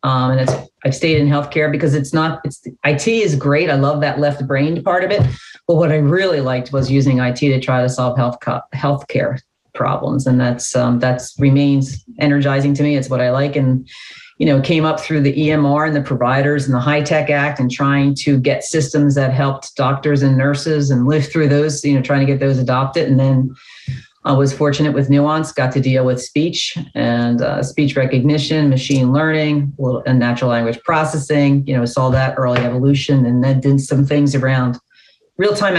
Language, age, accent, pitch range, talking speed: English, 40-59, American, 135-155 Hz, 200 wpm